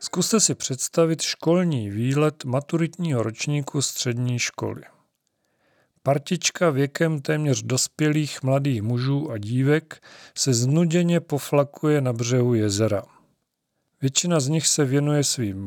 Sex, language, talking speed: male, Czech, 110 wpm